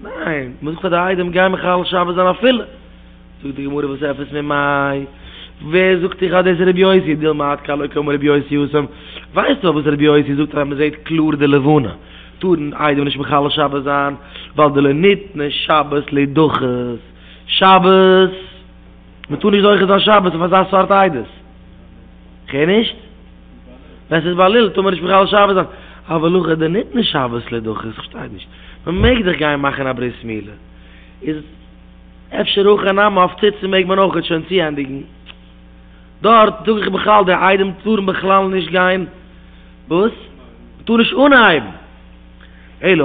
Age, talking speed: 20-39, 75 wpm